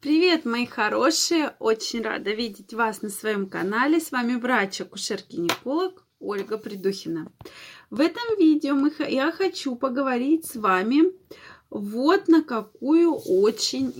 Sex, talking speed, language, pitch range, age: female, 120 wpm, Russian, 215-315 Hz, 20-39